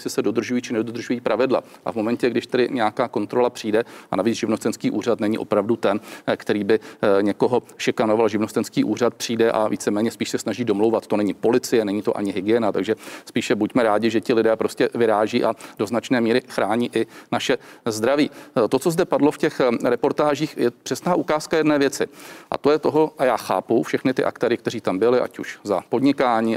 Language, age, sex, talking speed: Czech, 40-59, male, 195 wpm